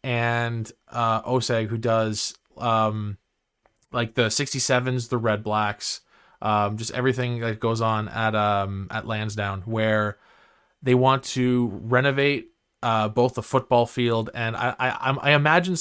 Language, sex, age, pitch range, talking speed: English, male, 20-39, 110-130 Hz, 140 wpm